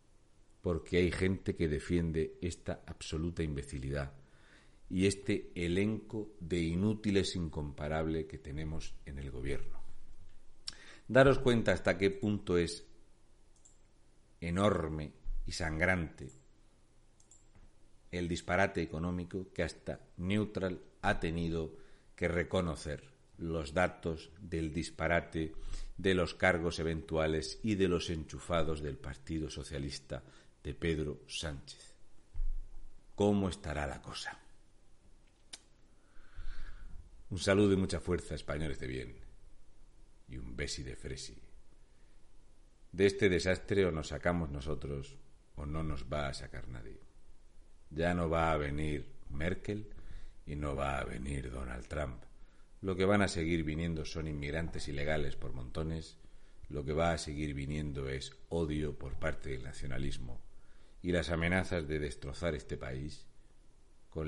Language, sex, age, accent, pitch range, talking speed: Spanish, male, 50-69, Spanish, 70-90 Hz, 120 wpm